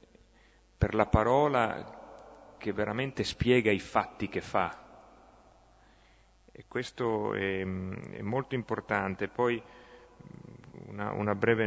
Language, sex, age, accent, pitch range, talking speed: Italian, male, 40-59, native, 95-120 Hz, 105 wpm